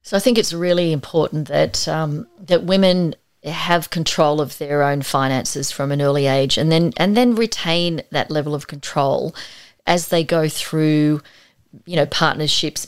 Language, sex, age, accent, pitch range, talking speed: English, female, 30-49, Australian, 145-175 Hz, 170 wpm